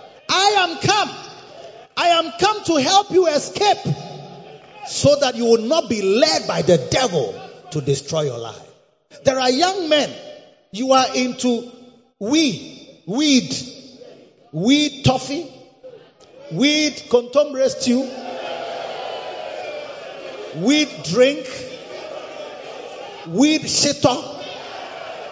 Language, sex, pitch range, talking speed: English, male, 230-300 Hz, 100 wpm